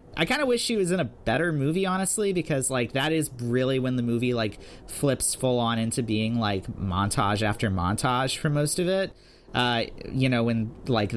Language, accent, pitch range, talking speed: English, American, 110-155 Hz, 205 wpm